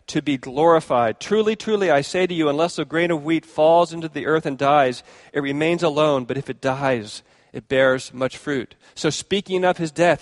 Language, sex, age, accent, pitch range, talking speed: English, male, 40-59, American, 130-170 Hz, 210 wpm